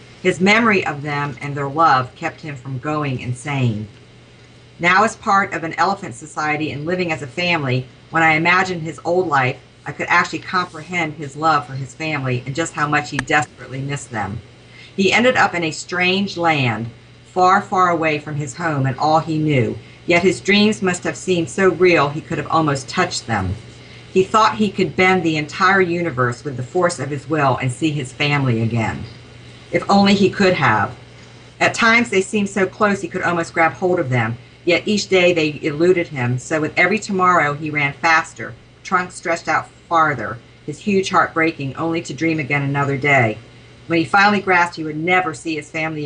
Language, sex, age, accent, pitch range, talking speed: English, female, 50-69, American, 135-175 Hz, 200 wpm